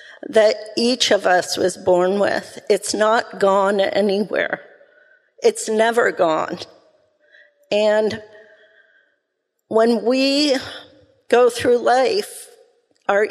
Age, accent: 50-69, American